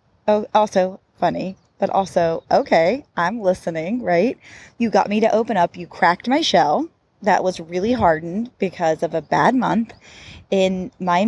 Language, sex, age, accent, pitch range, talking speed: English, female, 20-39, American, 175-225 Hz, 160 wpm